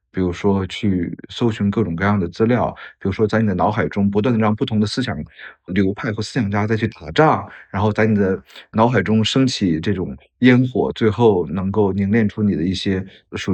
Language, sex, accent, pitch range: Chinese, male, native, 95-115 Hz